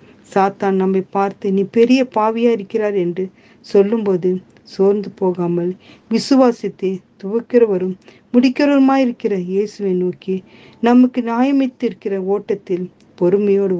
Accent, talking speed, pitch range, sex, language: native, 90 wpm, 185-220 Hz, female, Tamil